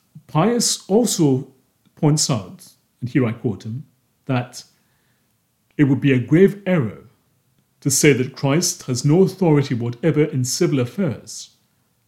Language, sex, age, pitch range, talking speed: English, male, 40-59, 120-150 Hz, 135 wpm